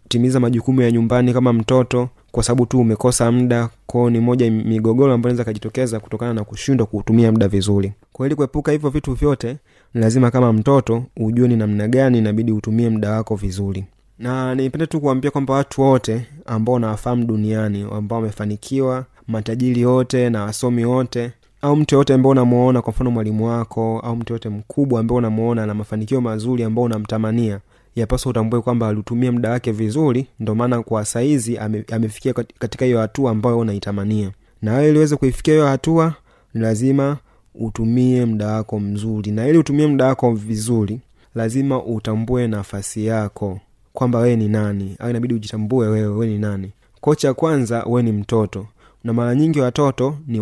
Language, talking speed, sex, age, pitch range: Swahili, 165 wpm, male, 30-49, 110-130 Hz